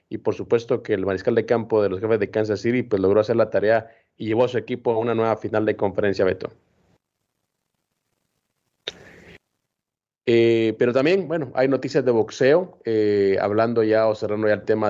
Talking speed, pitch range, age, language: 190 wpm, 105-125 Hz, 30-49, Spanish